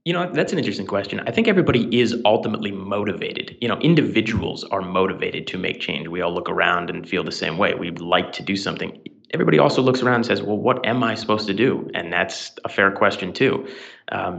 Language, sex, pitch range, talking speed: English, male, 90-120 Hz, 225 wpm